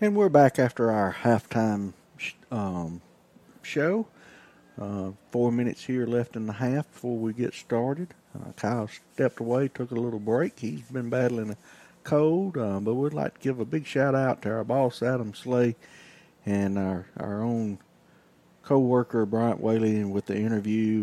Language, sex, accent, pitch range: English, male, American, 105-120 Hz